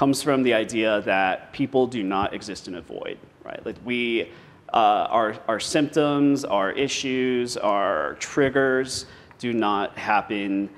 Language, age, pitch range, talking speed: English, 40-59, 105-130 Hz, 145 wpm